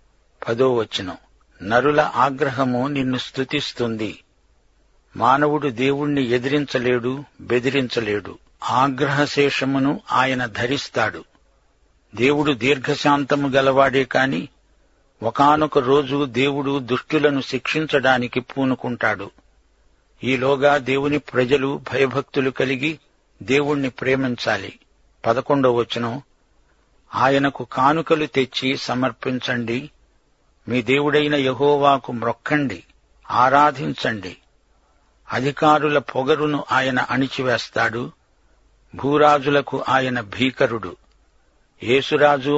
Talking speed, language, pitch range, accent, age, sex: 70 wpm, Telugu, 120-140 Hz, native, 60-79, male